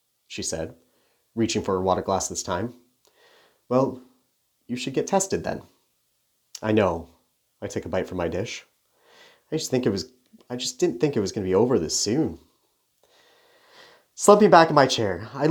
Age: 30-49